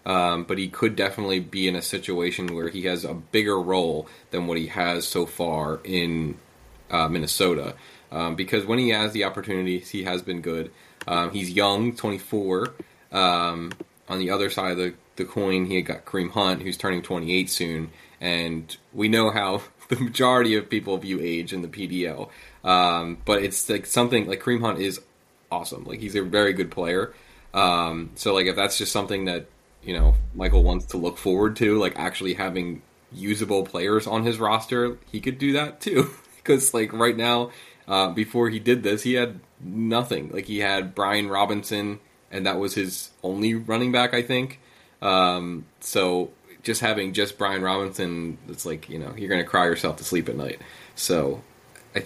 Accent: American